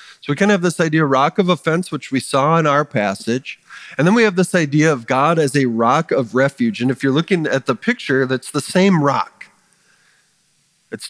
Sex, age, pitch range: male, 40-59, 120-165 Hz